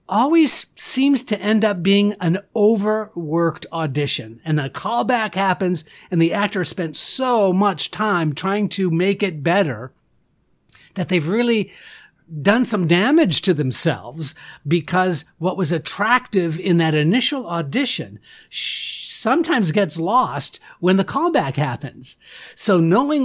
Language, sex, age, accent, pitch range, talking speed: English, male, 50-69, American, 155-215 Hz, 130 wpm